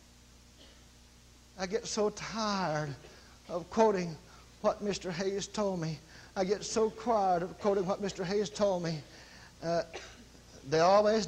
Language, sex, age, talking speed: English, male, 60-79, 135 wpm